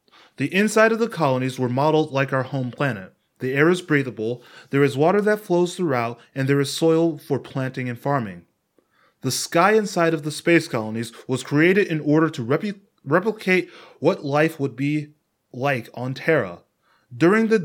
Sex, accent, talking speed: male, American, 175 wpm